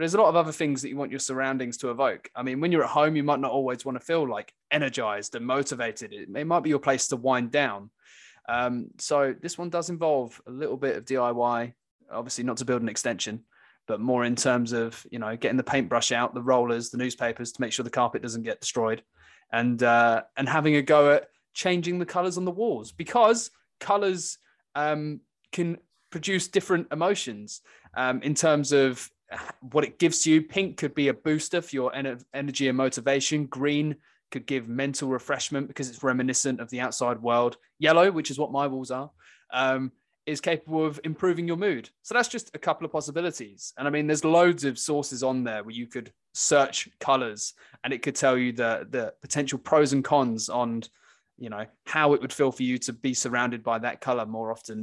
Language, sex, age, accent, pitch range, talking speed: English, male, 20-39, British, 120-155 Hz, 210 wpm